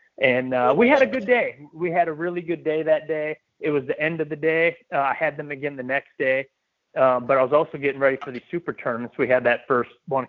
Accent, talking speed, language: American, 270 wpm, English